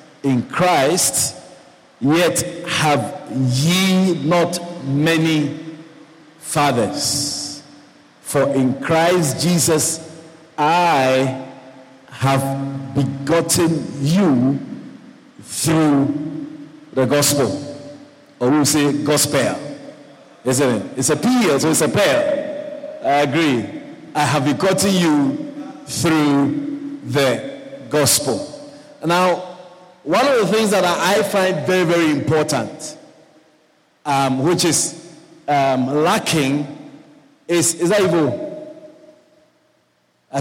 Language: English